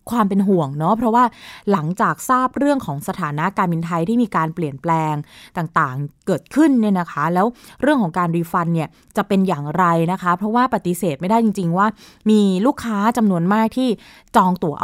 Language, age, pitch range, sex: Thai, 20-39, 165-220 Hz, female